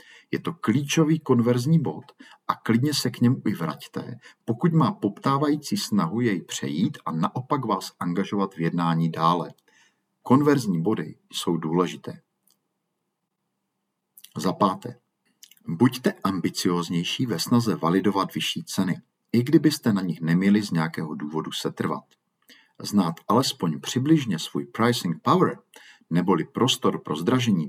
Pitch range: 85-130 Hz